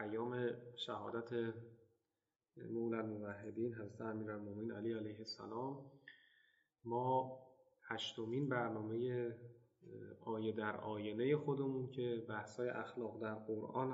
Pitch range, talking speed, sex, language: 110-130 Hz, 95 wpm, male, Persian